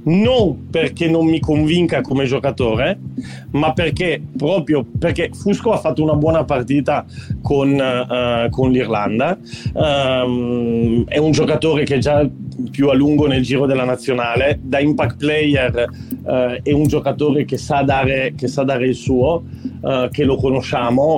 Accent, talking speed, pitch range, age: native, 155 wpm, 125-150 Hz, 40-59